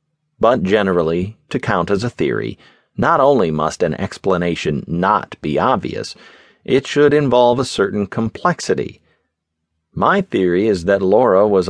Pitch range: 85-115 Hz